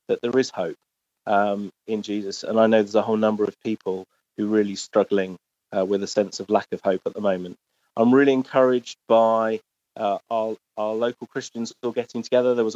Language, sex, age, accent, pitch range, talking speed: English, male, 30-49, British, 105-120 Hz, 210 wpm